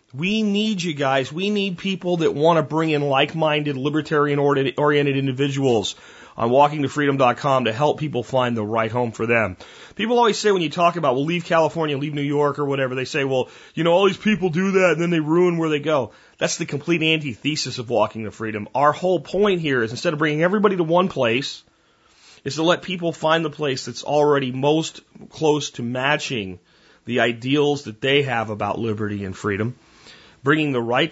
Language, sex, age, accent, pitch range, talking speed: English, male, 30-49, American, 125-160 Hz, 200 wpm